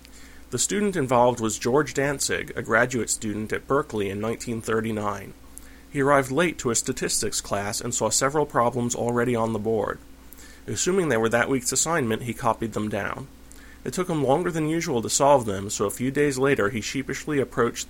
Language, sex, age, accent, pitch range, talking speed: English, male, 30-49, American, 110-135 Hz, 185 wpm